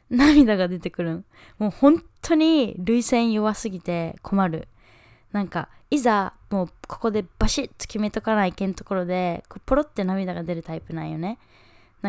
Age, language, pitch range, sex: 20-39, Japanese, 185-240 Hz, female